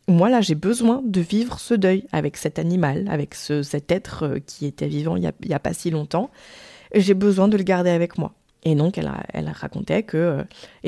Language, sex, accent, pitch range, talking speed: French, female, French, 155-205 Hz, 215 wpm